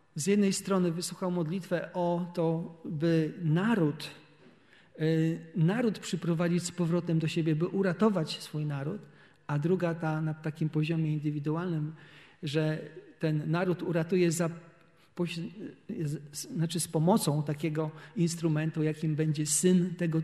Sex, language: male, Polish